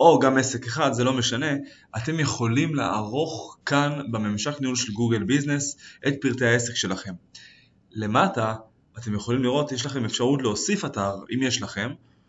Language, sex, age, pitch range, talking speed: Hebrew, male, 20-39, 115-150 Hz, 155 wpm